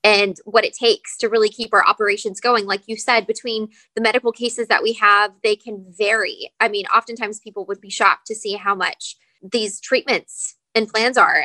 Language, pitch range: English, 205-245 Hz